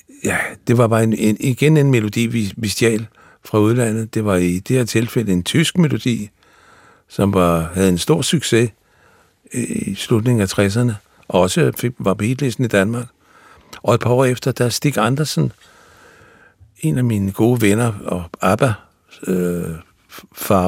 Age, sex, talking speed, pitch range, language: 60-79, male, 155 wpm, 95-125 Hz, Danish